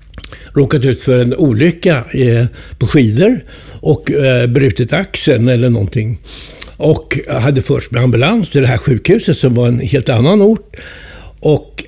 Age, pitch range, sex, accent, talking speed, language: 60-79, 110-155 Hz, male, native, 155 wpm, Swedish